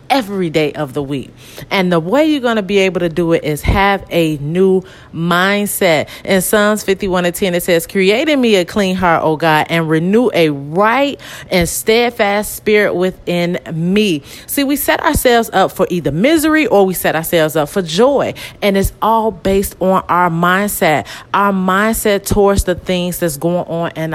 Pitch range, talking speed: 175-225 Hz, 190 wpm